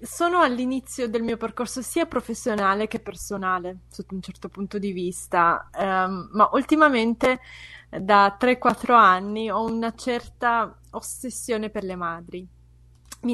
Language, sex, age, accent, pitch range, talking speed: Italian, female, 20-39, native, 195-240 Hz, 125 wpm